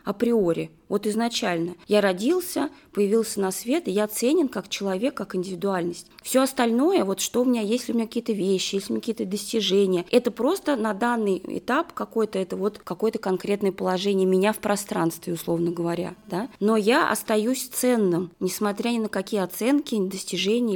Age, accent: 20-39, native